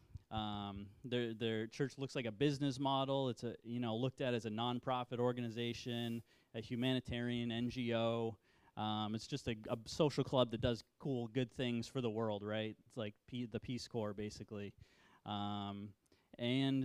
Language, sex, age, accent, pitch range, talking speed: English, male, 30-49, American, 115-135 Hz, 165 wpm